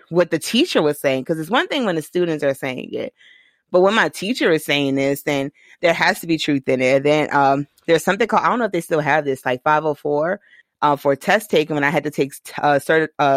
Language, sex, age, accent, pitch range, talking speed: English, female, 30-49, American, 140-165 Hz, 265 wpm